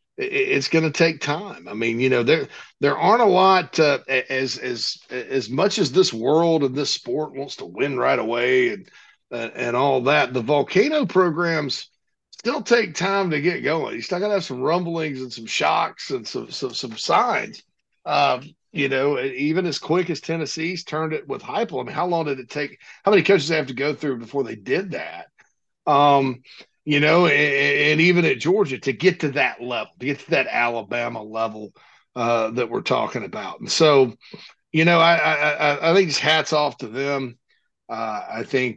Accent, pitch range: American, 125-165 Hz